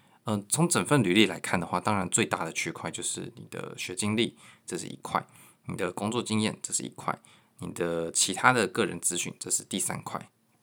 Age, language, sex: 20-39, Chinese, male